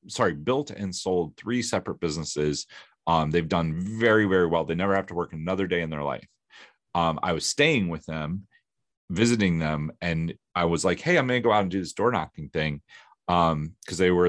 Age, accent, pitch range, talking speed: 30-49, American, 90-125 Hz, 215 wpm